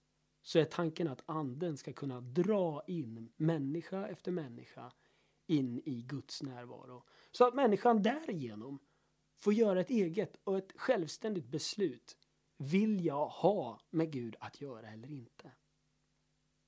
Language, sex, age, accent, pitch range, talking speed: Swedish, male, 30-49, native, 135-195 Hz, 135 wpm